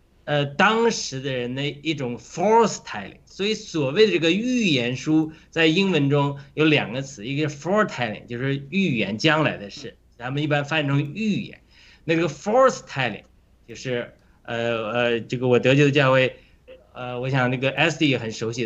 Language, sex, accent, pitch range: Chinese, male, native, 130-185 Hz